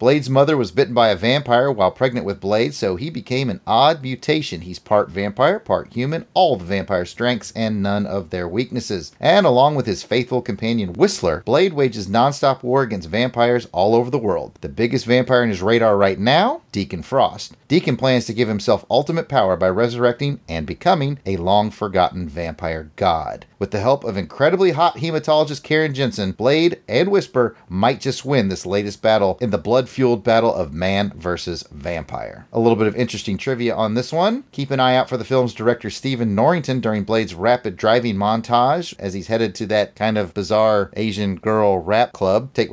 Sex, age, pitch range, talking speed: male, 30-49, 100-130 Hz, 190 wpm